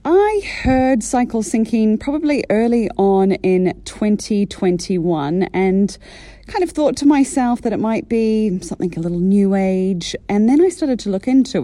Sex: female